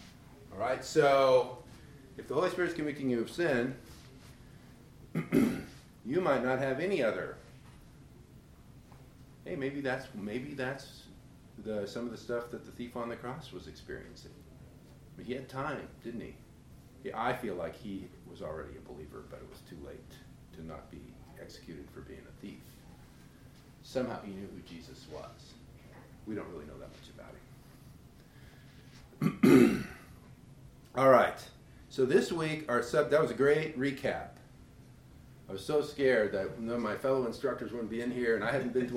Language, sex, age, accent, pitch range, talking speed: English, male, 40-59, American, 115-140 Hz, 165 wpm